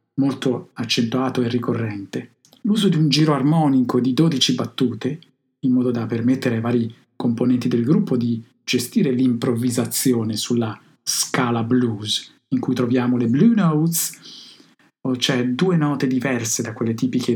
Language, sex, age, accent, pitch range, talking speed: Italian, male, 50-69, native, 120-145 Hz, 140 wpm